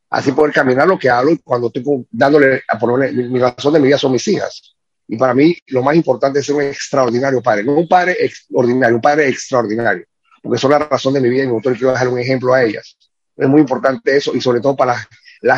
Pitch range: 130-170 Hz